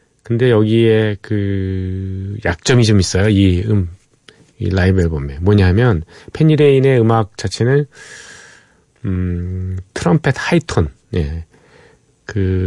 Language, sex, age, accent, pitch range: Korean, male, 40-59, native, 95-120 Hz